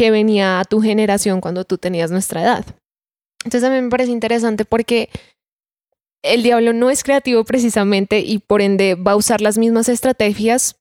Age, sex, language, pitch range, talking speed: 10-29, female, Spanish, 190-230 Hz, 180 wpm